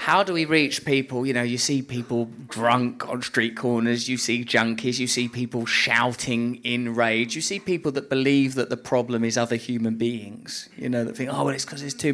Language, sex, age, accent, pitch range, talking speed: English, male, 20-39, British, 115-135 Hz, 220 wpm